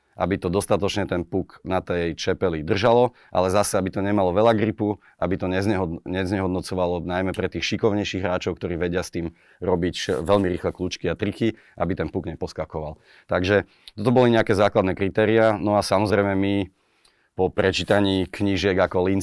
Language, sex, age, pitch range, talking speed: Slovak, male, 30-49, 90-100 Hz, 170 wpm